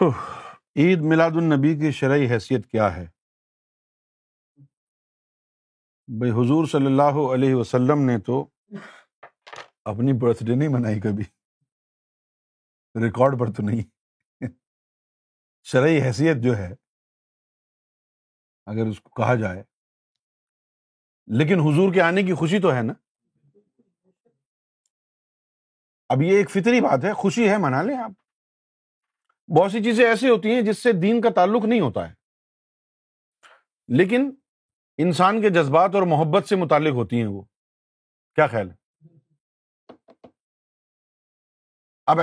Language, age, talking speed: Urdu, 50-69, 120 wpm